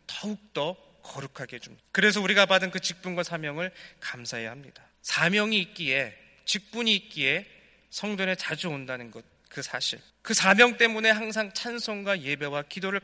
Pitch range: 140-195 Hz